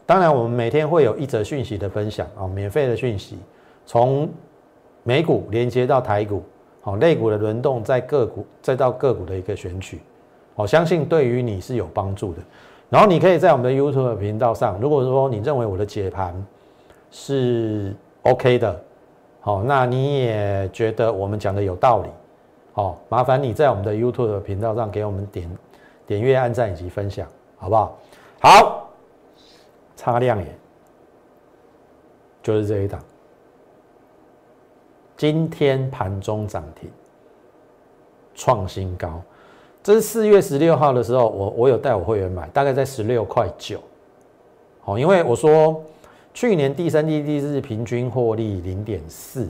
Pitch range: 100-140 Hz